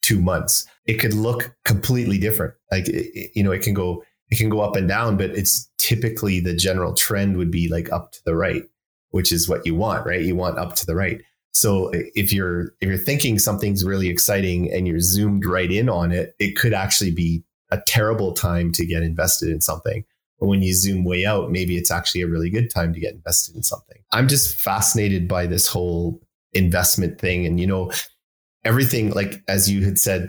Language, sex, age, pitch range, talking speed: English, male, 30-49, 90-105 Hz, 210 wpm